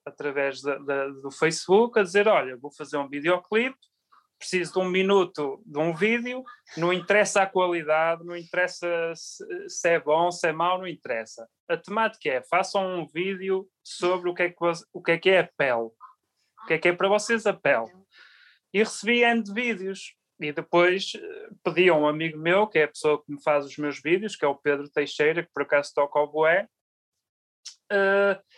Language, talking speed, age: Portuguese, 195 wpm, 30-49